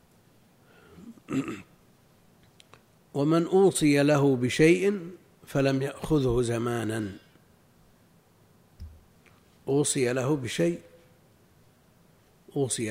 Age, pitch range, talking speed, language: 60-79, 115-155 Hz, 50 wpm, Arabic